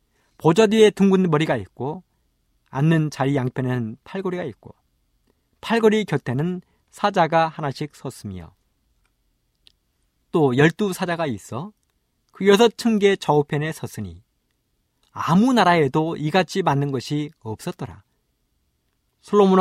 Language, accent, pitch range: Korean, native, 125-185 Hz